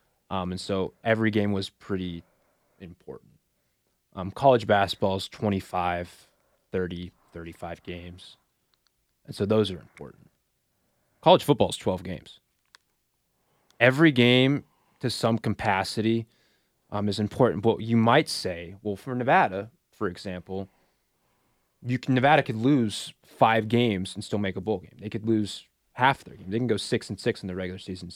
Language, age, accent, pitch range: English, 20-39, American, 95-115 Hz